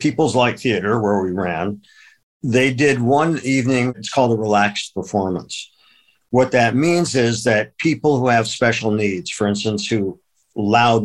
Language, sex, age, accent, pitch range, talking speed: English, male, 50-69, American, 105-130 Hz, 155 wpm